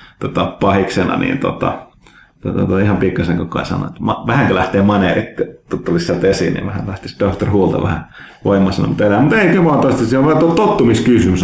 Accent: native